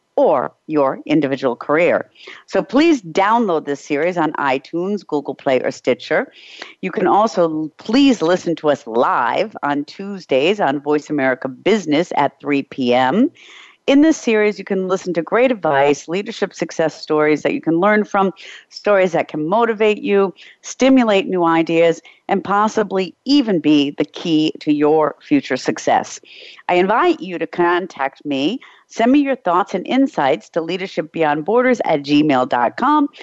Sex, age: female, 50-69